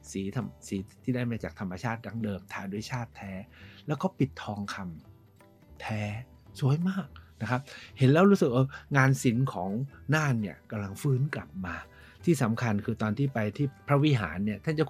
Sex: male